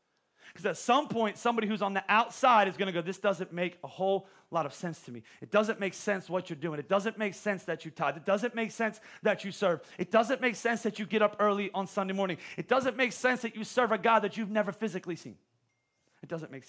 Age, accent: 30-49, American